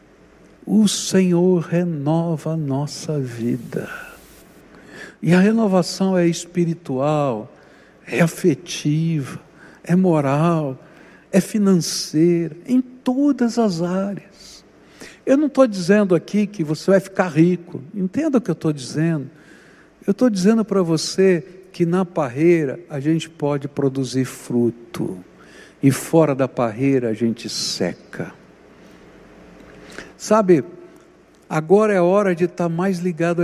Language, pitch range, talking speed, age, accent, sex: Portuguese, 150-195 Hz, 115 wpm, 60-79, Brazilian, male